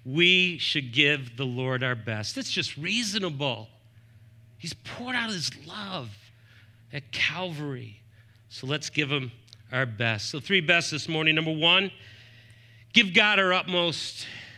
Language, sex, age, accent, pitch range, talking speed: English, male, 50-69, American, 115-180 Hz, 140 wpm